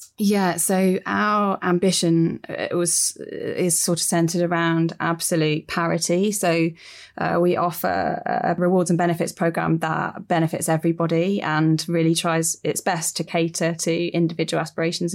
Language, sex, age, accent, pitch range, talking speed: English, female, 20-39, British, 165-190 Hz, 135 wpm